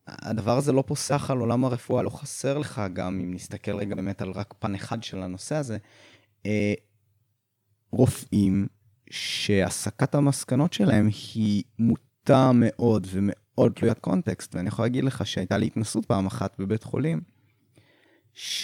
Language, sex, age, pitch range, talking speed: Hebrew, male, 20-39, 105-135 Hz, 140 wpm